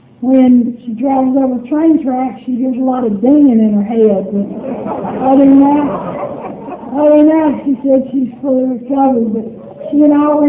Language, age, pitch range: English, 60-79, 225-265 Hz